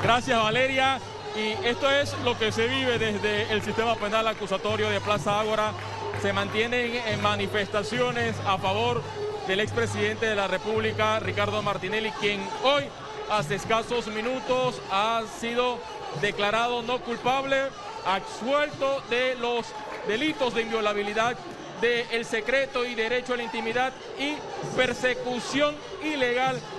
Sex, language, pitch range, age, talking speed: male, Spanish, 220-260 Hz, 40-59, 125 wpm